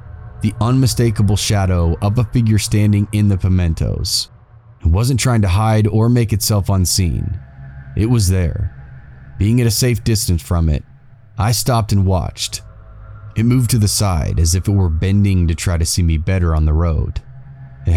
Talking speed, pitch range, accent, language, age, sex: 175 wpm, 90-110 Hz, American, English, 30-49, male